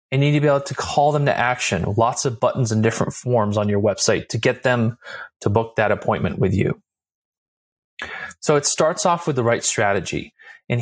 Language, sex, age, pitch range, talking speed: English, male, 30-49, 105-135 Hz, 215 wpm